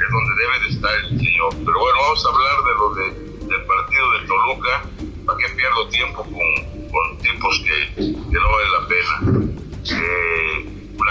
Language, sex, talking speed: English, male, 180 wpm